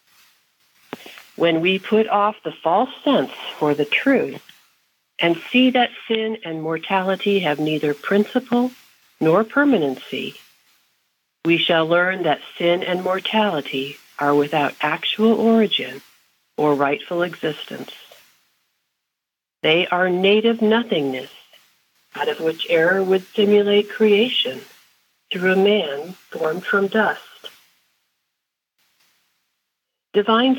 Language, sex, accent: English, female, American